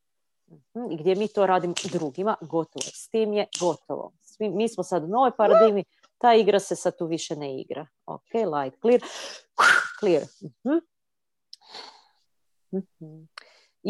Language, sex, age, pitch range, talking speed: Croatian, female, 40-59, 160-230 Hz, 140 wpm